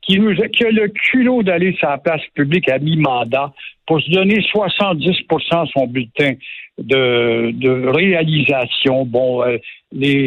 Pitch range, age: 145-200 Hz, 60-79